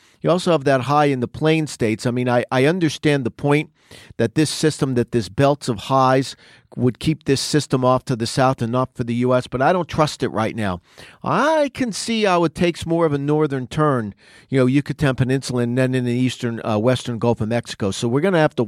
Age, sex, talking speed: 50-69, male, 240 wpm